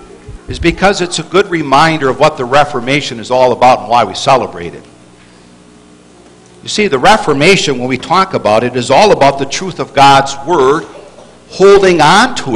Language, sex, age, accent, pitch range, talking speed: English, male, 60-79, American, 120-185 Hz, 180 wpm